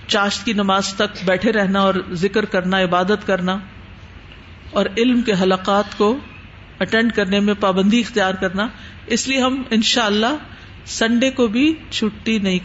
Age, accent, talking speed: 50-69, Indian, 140 wpm